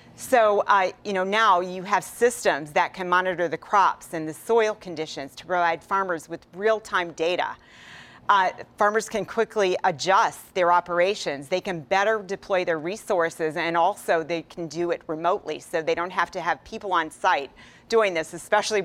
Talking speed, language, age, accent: 180 wpm, English, 40-59, American